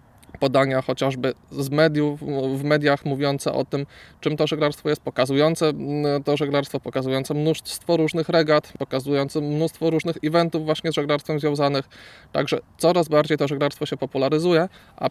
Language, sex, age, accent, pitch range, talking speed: Polish, male, 20-39, native, 135-155 Hz, 135 wpm